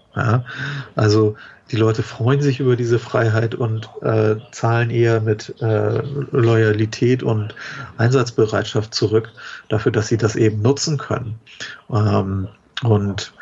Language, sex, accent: German, male, German